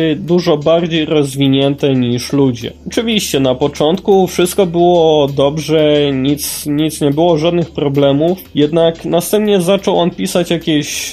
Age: 20-39